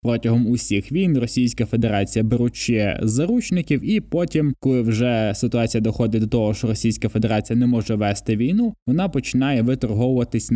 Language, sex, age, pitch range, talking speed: Ukrainian, male, 20-39, 110-130 Hz, 140 wpm